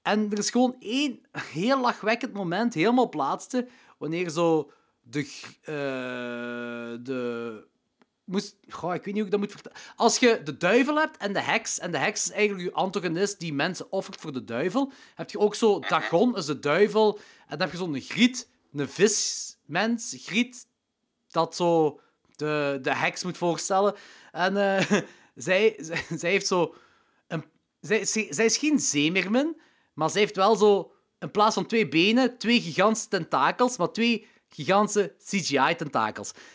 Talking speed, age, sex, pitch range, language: 160 wpm, 30-49, male, 170-240 Hz, Dutch